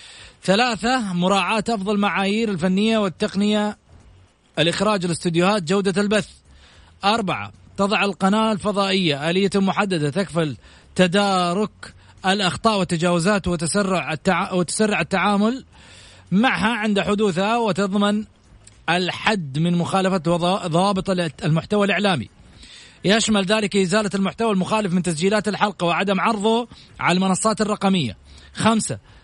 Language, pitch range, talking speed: Arabic, 180-215 Hz, 100 wpm